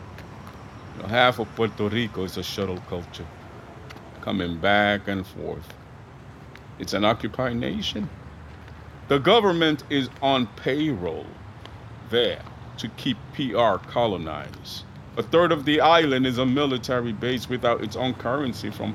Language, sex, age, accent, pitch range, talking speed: English, male, 50-69, American, 100-130 Hz, 125 wpm